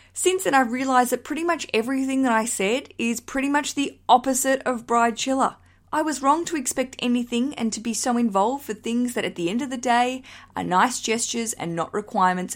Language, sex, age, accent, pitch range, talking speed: English, female, 20-39, Australian, 200-260 Hz, 215 wpm